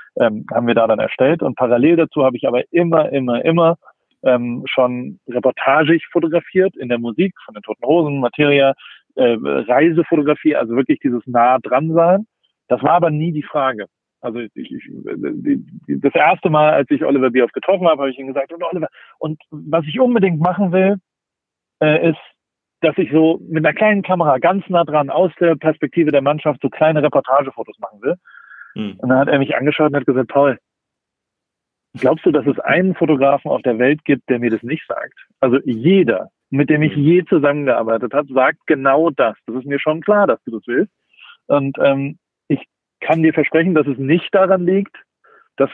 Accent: German